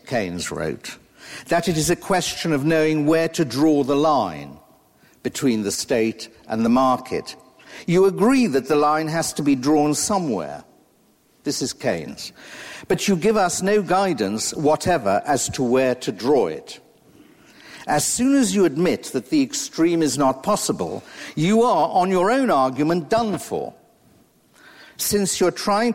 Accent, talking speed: British, 155 wpm